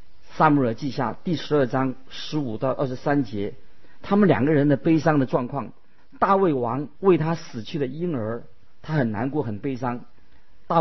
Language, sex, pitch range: Chinese, male, 115-155 Hz